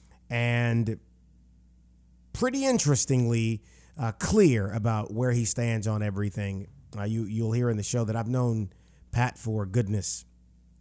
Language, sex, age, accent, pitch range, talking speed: English, male, 30-49, American, 105-125 Hz, 140 wpm